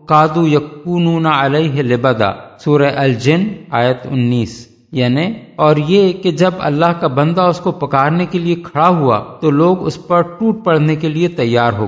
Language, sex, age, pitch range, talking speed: Urdu, male, 50-69, 140-175 Hz, 150 wpm